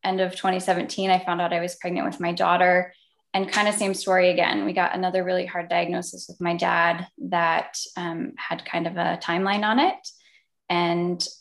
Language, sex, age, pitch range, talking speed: English, female, 10-29, 170-190 Hz, 195 wpm